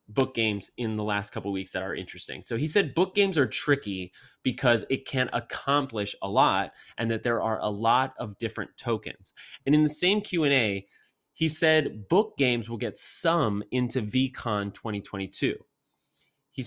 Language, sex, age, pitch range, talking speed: English, male, 30-49, 105-140 Hz, 175 wpm